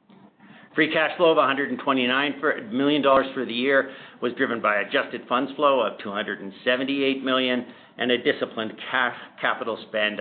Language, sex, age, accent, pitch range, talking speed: English, male, 50-69, American, 110-140 Hz, 140 wpm